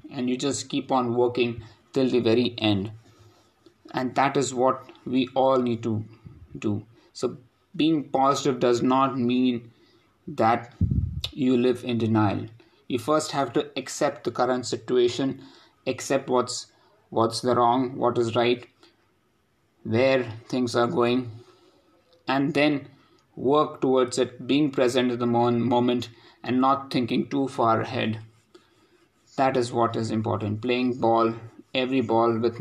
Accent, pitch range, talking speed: Indian, 115-130 Hz, 140 wpm